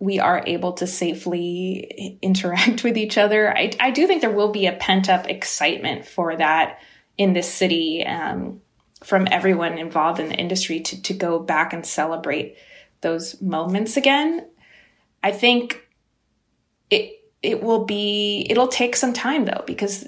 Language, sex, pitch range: English, female, 175-210 Hz